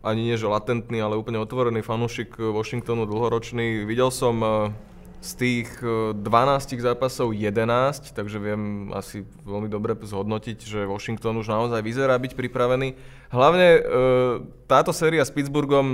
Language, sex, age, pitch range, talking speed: Slovak, male, 20-39, 110-125 Hz, 130 wpm